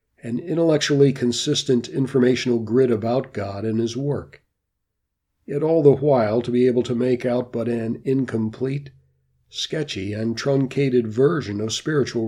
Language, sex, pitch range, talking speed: English, male, 110-135 Hz, 140 wpm